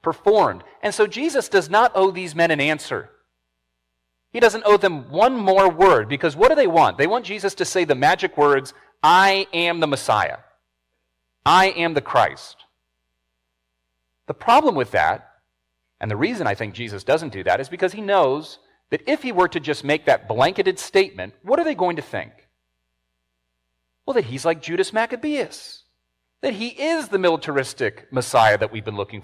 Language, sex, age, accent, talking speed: English, male, 40-59, American, 180 wpm